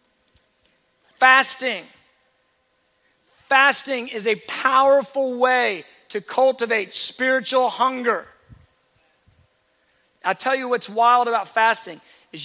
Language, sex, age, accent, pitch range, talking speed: English, male, 40-59, American, 225-260 Hz, 85 wpm